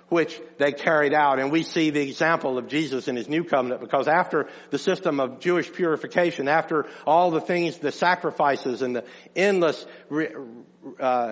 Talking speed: 170 wpm